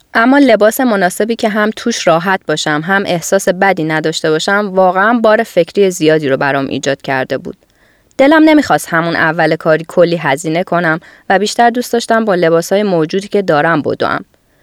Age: 20-39